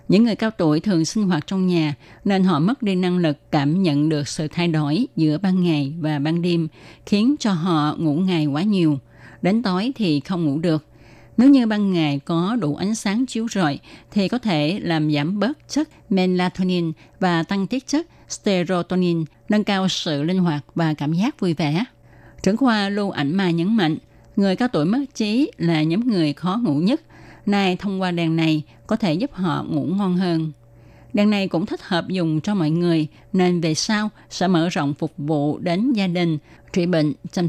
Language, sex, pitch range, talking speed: Vietnamese, female, 155-195 Hz, 200 wpm